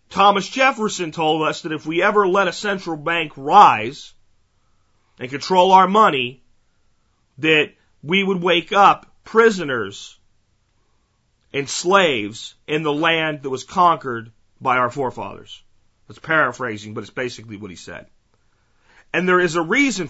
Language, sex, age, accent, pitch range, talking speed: English, male, 40-59, American, 125-195 Hz, 140 wpm